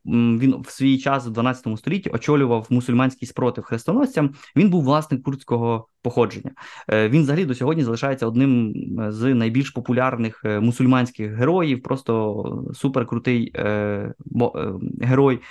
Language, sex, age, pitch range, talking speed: Ukrainian, male, 20-39, 120-150 Hz, 115 wpm